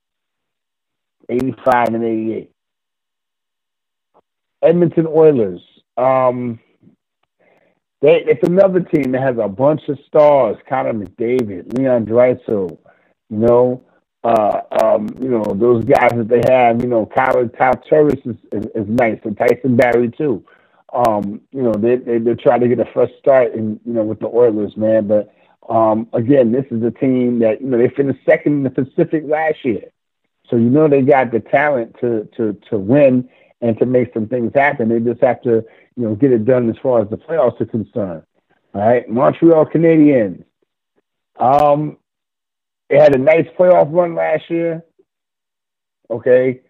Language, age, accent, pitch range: English, 40-59, American, 115-145 Hz